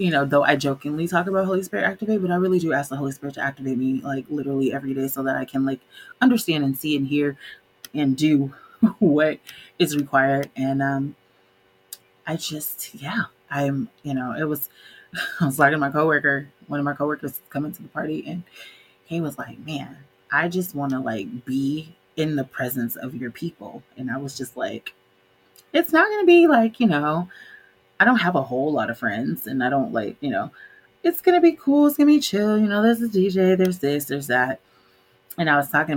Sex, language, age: female, English, 20-39